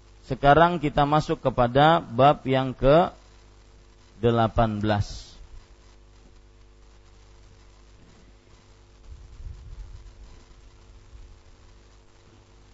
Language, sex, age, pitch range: Malay, male, 40-59, 115-165 Hz